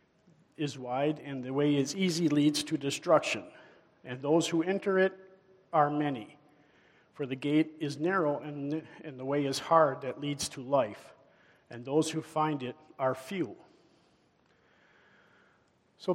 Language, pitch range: English, 135-155 Hz